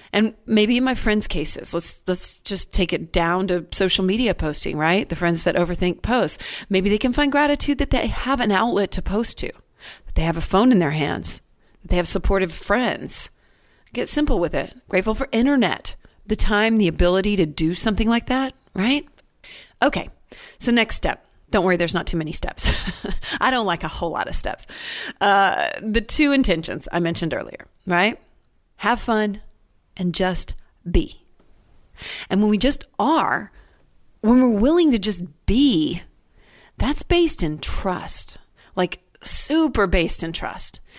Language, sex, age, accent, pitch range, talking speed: English, female, 40-59, American, 180-265 Hz, 170 wpm